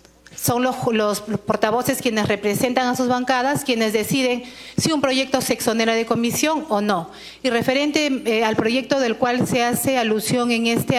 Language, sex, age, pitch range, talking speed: Spanish, female, 40-59, 225-255 Hz, 175 wpm